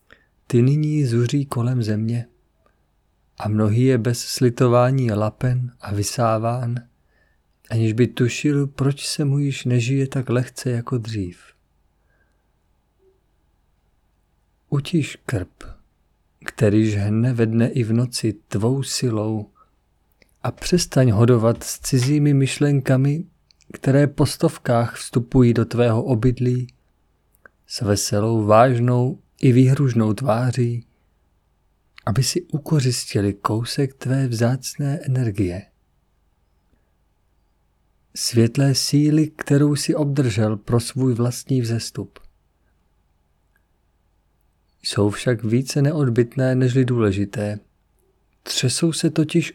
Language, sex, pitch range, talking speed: Czech, male, 100-135 Hz, 95 wpm